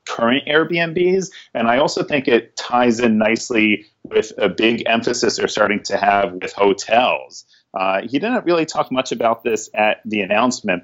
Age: 30-49